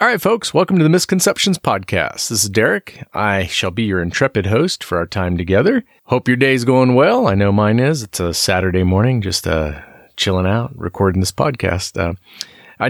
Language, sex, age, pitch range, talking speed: English, male, 40-59, 90-135 Hz, 200 wpm